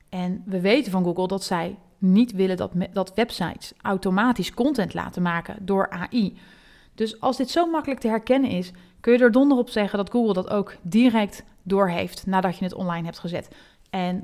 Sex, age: female, 30-49